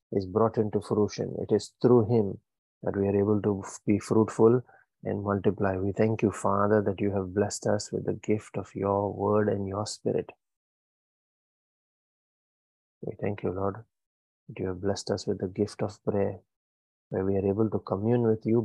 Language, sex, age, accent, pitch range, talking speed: English, male, 30-49, Indian, 100-110 Hz, 185 wpm